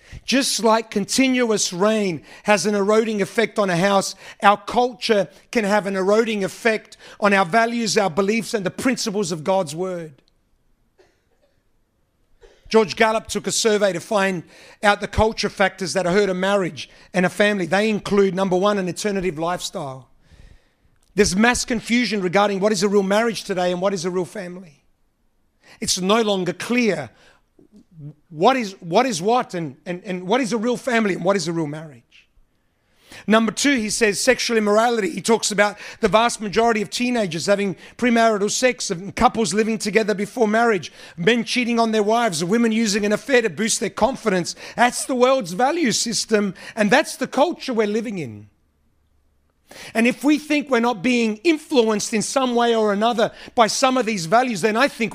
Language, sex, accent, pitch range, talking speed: English, male, Australian, 185-230 Hz, 175 wpm